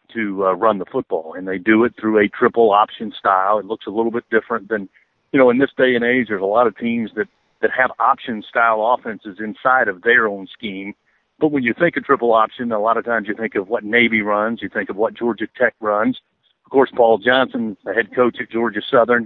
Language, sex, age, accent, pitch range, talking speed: English, male, 50-69, American, 105-130 Hz, 245 wpm